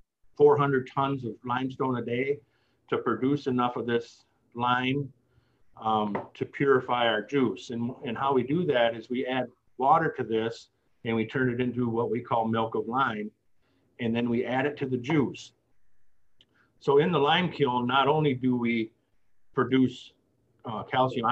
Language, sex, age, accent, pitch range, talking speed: English, male, 50-69, American, 115-135 Hz, 170 wpm